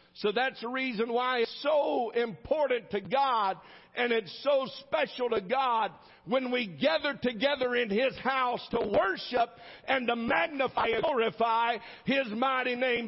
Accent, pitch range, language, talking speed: American, 145-245 Hz, English, 150 wpm